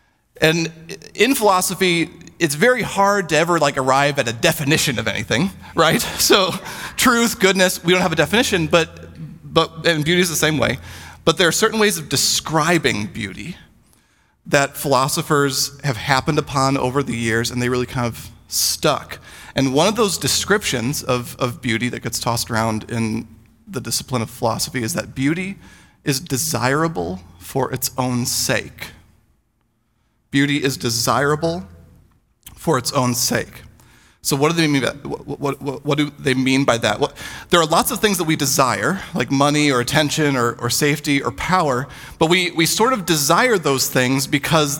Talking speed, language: 170 wpm, English